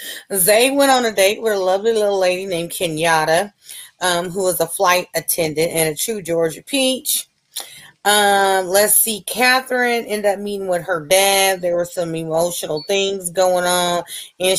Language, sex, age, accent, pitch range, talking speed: English, female, 30-49, American, 170-210 Hz, 170 wpm